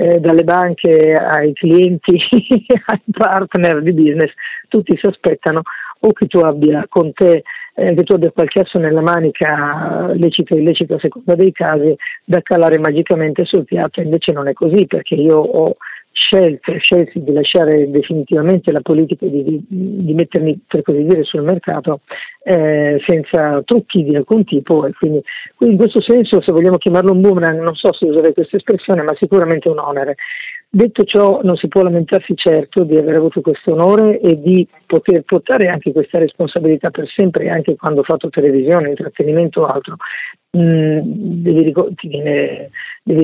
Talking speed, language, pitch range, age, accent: 165 wpm, Italian, 155-190 Hz, 50-69, native